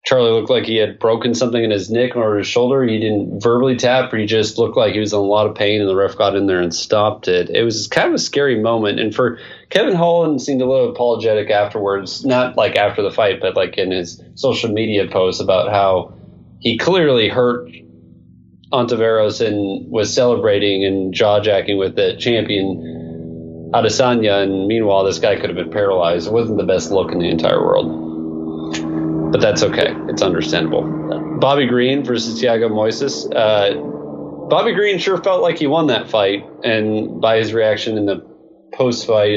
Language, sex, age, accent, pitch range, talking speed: English, male, 30-49, American, 95-125 Hz, 190 wpm